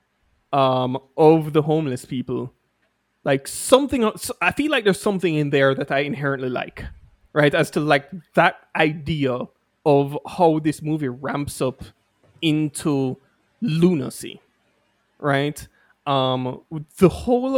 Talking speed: 125 wpm